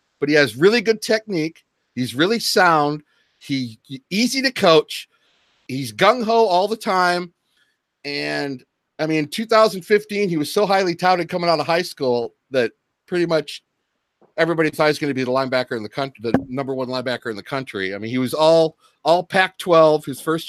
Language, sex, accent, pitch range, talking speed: English, male, American, 140-185 Hz, 190 wpm